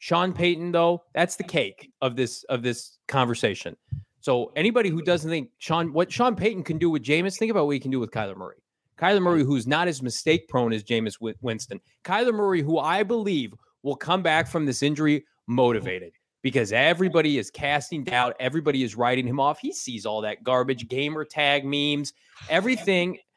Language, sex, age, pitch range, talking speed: English, male, 30-49, 125-175 Hz, 190 wpm